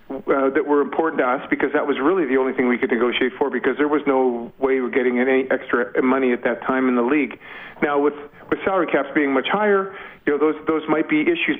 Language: English